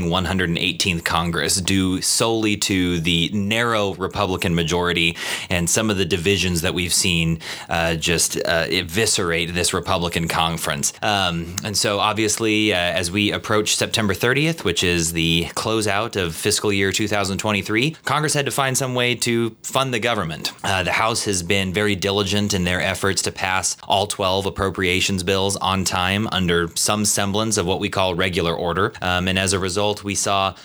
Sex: male